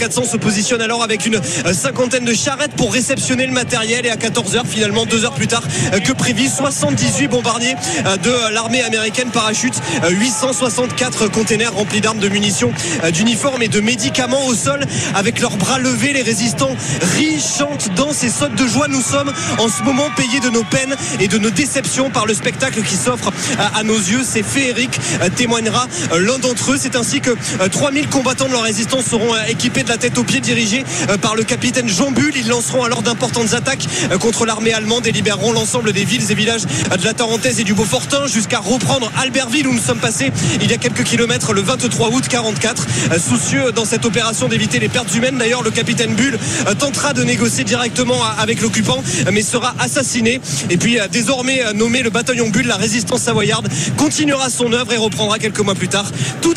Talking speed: 190 wpm